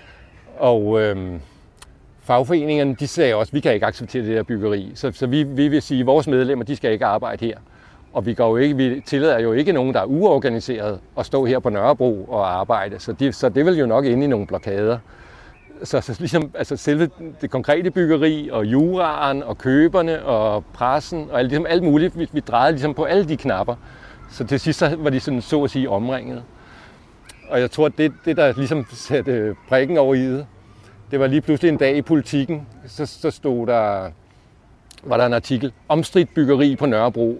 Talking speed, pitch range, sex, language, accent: 195 wpm, 115-145 Hz, male, Danish, native